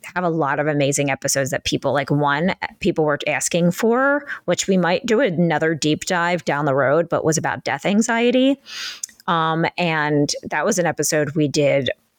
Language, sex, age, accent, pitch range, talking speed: English, female, 20-39, American, 155-210 Hz, 180 wpm